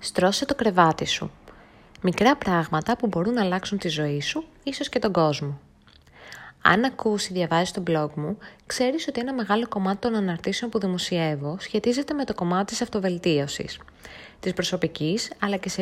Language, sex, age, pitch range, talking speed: Greek, female, 20-39, 165-225 Hz, 165 wpm